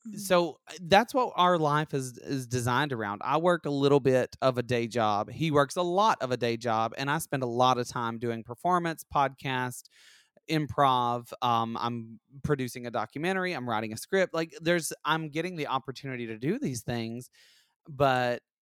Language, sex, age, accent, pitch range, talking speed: English, male, 30-49, American, 125-165 Hz, 185 wpm